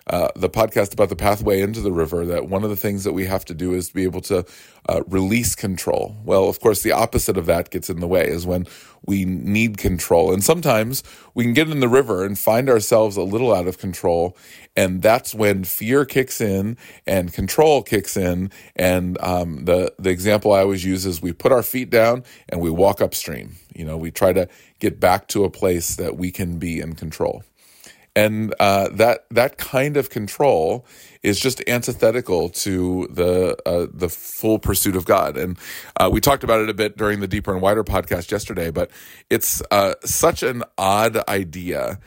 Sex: male